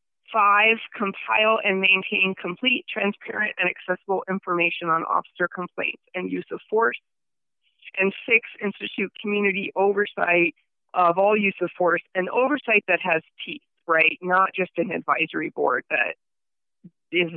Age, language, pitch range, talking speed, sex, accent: 30-49, English, 170-205 Hz, 135 wpm, female, American